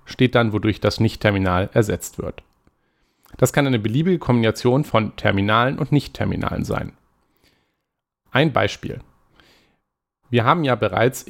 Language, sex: German, male